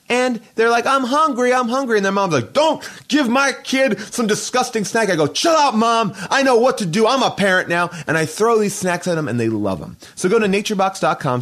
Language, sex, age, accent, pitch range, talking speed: English, male, 30-49, American, 120-190 Hz, 245 wpm